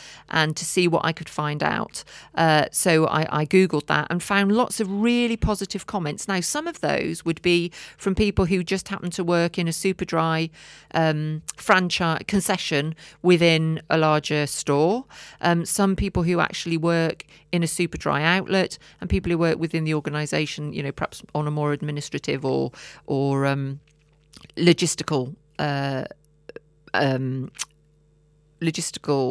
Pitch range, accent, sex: 150-190 Hz, British, female